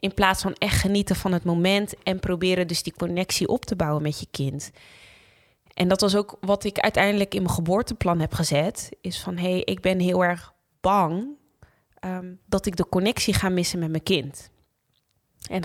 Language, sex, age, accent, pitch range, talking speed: Dutch, female, 20-39, Dutch, 165-190 Hz, 195 wpm